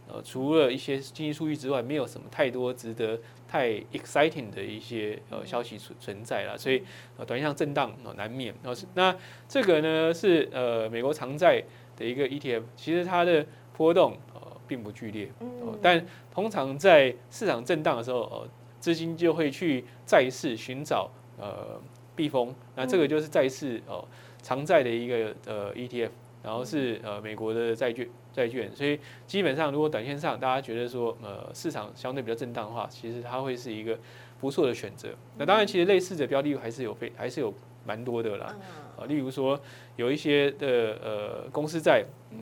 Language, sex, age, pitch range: Chinese, male, 20-39, 120-150 Hz